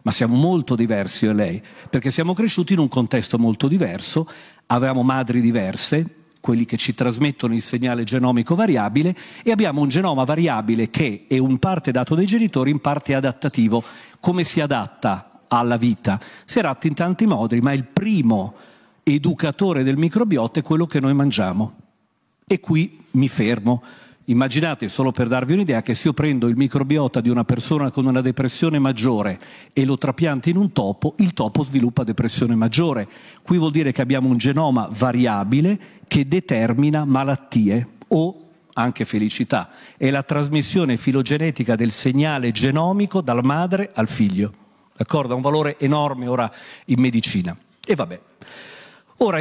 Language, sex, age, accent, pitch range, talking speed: Italian, male, 50-69, native, 125-165 Hz, 160 wpm